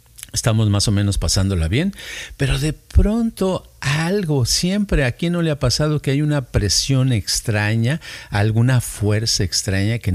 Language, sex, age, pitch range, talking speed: Spanish, male, 50-69, 105-140 Hz, 150 wpm